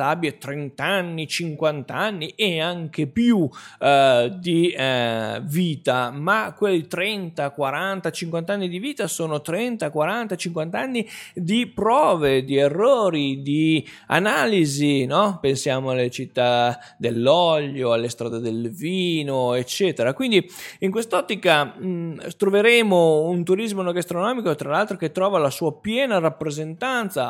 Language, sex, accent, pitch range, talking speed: Italian, male, native, 140-185 Hz, 125 wpm